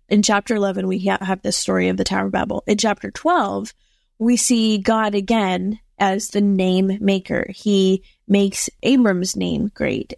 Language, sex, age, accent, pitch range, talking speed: English, female, 20-39, American, 190-225 Hz, 165 wpm